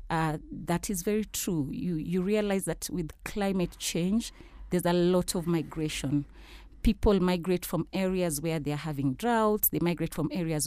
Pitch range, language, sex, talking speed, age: 155-190 Hz, English, female, 170 wpm, 30-49